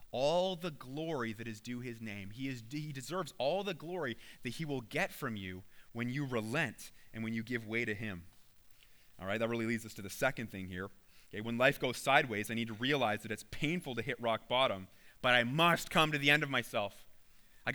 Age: 30-49